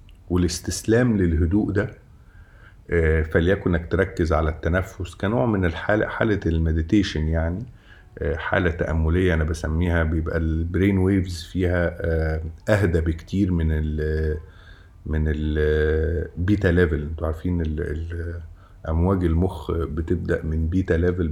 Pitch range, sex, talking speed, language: 80-95 Hz, male, 100 wpm, Arabic